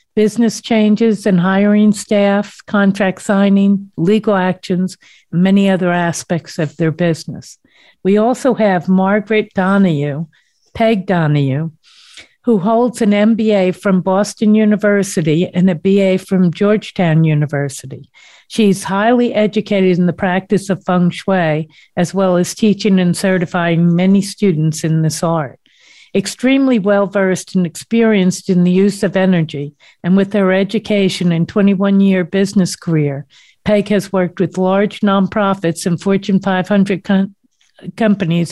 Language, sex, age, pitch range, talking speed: English, female, 60-79, 175-205 Hz, 130 wpm